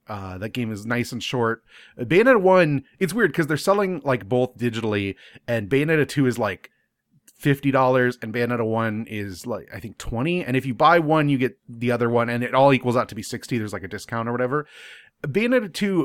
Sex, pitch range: male, 110-140 Hz